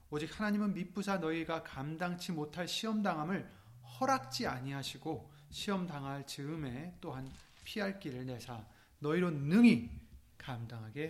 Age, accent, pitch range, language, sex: 30-49, native, 130-195 Hz, Korean, male